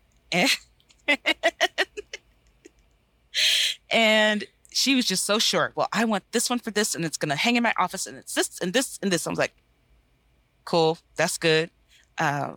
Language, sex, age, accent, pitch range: English, female, 30-49, American, 145-195 Hz